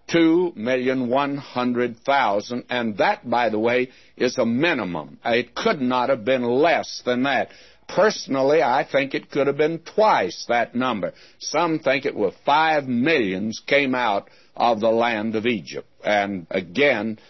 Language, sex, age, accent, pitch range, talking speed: English, male, 60-79, American, 105-130 Hz, 140 wpm